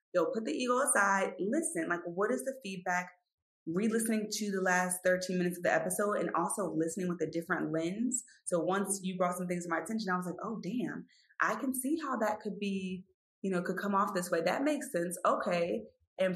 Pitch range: 175-220 Hz